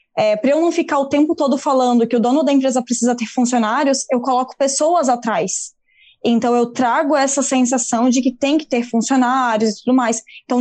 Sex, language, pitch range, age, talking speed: female, Portuguese, 240-305 Hz, 10-29, 205 wpm